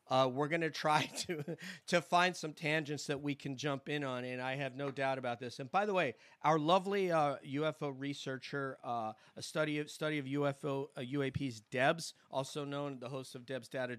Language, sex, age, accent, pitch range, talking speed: English, male, 40-59, American, 125-145 Hz, 210 wpm